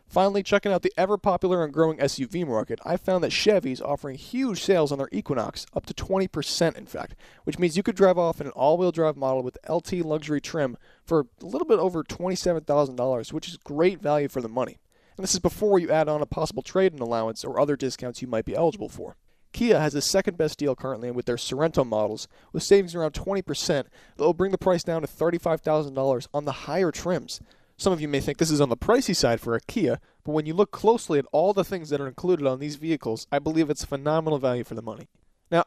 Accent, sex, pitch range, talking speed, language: American, male, 135-180 Hz, 235 wpm, English